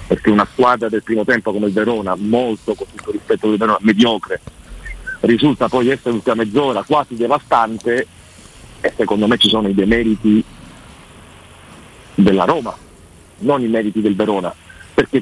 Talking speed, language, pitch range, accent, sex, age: 150 wpm, Italian, 115-155 Hz, native, male, 50-69